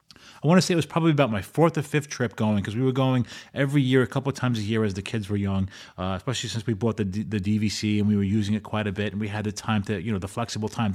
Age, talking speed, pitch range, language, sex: 30-49, 325 wpm, 105-135 Hz, English, male